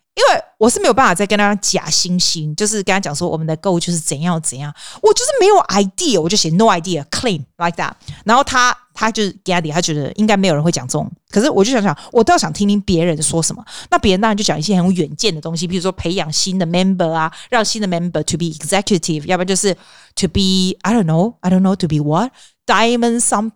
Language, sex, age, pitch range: Chinese, female, 30-49, 165-220 Hz